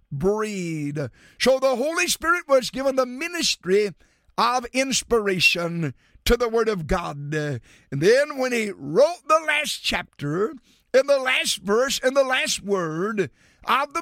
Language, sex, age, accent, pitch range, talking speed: English, male, 50-69, American, 185-265 Hz, 145 wpm